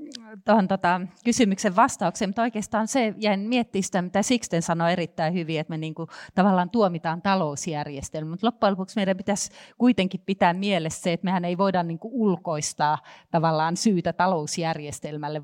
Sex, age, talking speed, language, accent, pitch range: female, 30-49, 150 wpm, Finnish, native, 160-195 Hz